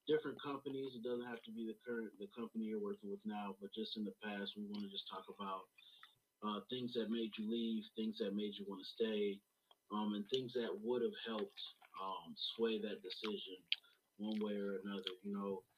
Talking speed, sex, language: 215 wpm, male, English